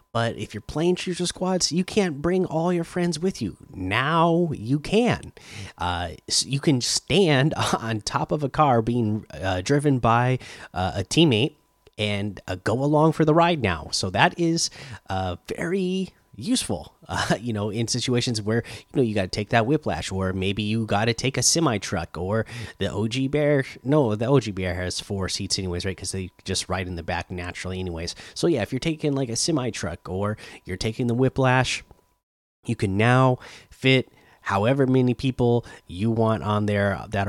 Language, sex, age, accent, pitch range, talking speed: English, male, 30-49, American, 95-135 Hz, 190 wpm